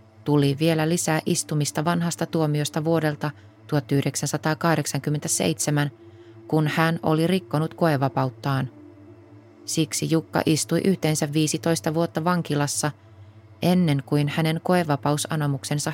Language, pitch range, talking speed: Finnish, 135-165 Hz, 90 wpm